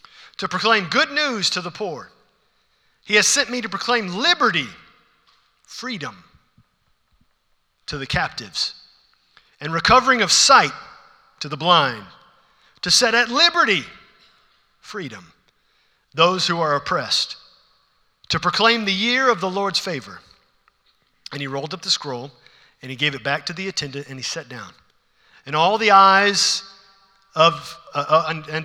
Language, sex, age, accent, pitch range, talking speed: English, male, 50-69, American, 170-255 Hz, 145 wpm